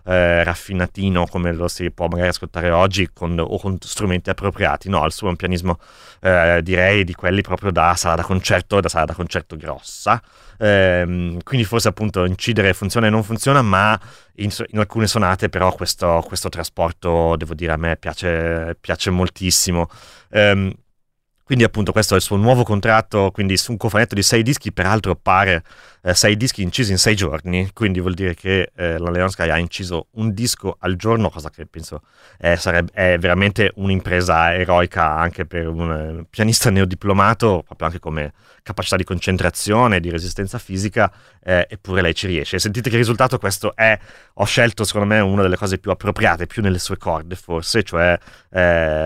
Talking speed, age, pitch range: 180 wpm, 30-49, 85-105 Hz